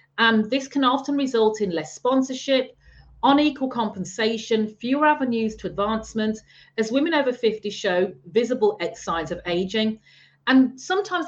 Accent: British